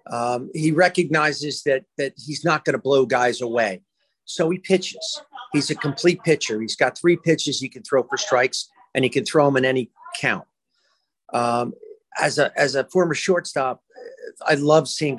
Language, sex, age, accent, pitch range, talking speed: English, male, 40-59, American, 130-170 Hz, 180 wpm